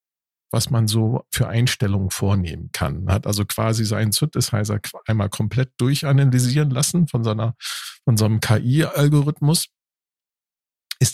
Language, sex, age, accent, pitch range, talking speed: German, male, 50-69, German, 105-140 Hz, 130 wpm